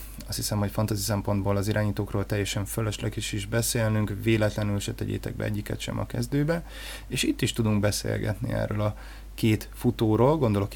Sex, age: male, 20-39